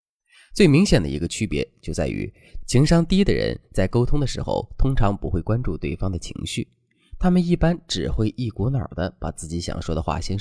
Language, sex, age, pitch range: Chinese, male, 20-39, 90-135 Hz